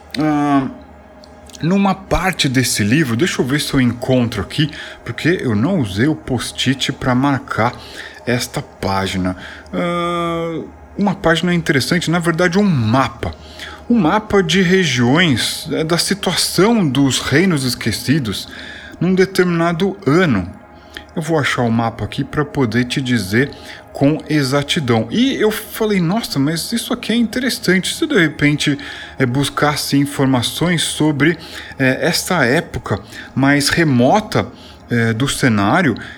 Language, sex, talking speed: Portuguese, male, 130 wpm